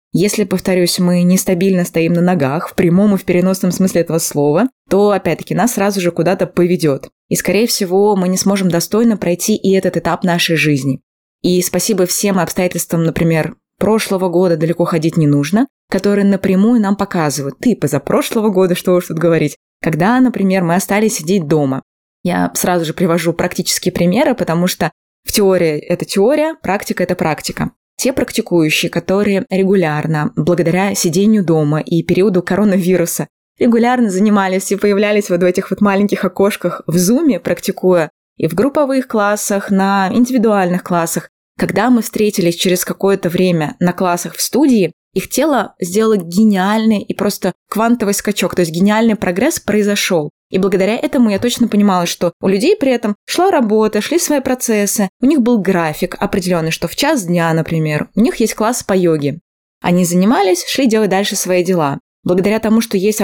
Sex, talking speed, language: female, 165 wpm, Russian